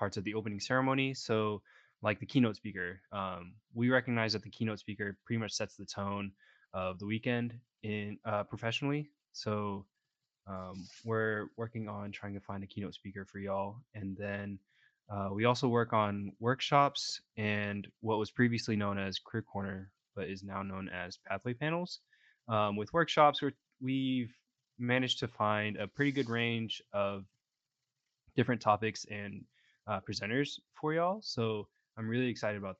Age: 20-39